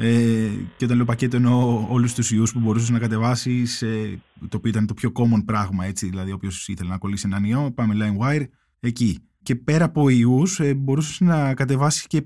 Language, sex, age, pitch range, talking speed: Greek, male, 20-39, 115-150 Hz, 190 wpm